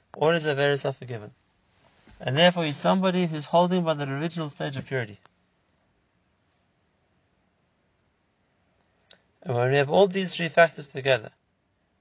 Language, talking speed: English, 135 wpm